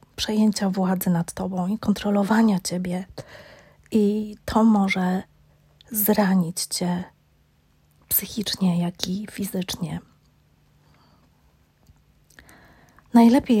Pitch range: 185-220 Hz